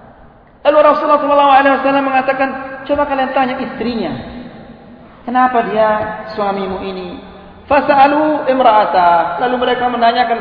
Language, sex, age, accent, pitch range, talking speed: English, male, 40-59, Indonesian, 220-280 Hz, 100 wpm